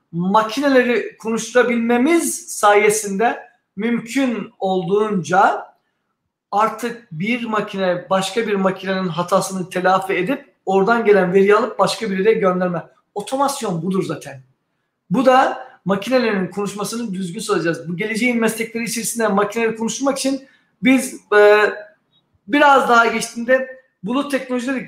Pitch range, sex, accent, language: 200-255 Hz, male, native, Turkish